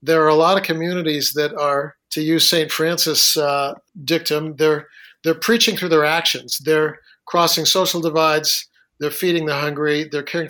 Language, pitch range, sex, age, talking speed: English, 155-185 Hz, male, 50-69, 170 wpm